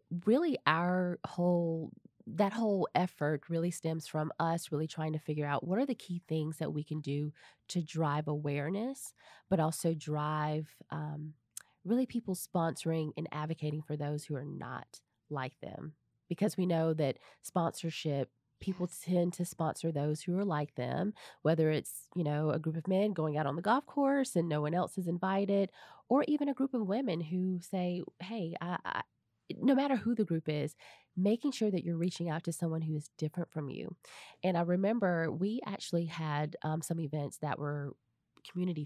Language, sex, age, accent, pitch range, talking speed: English, female, 20-39, American, 150-185 Hz, 185 wpm